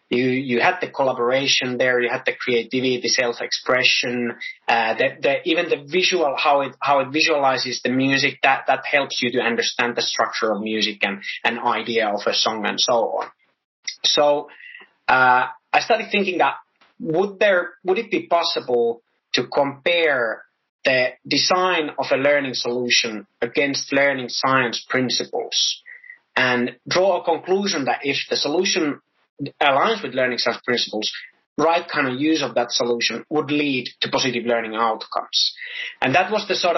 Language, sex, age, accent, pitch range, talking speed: English, male, 30-49, Finnish, 125-160 Hz, 160 wpm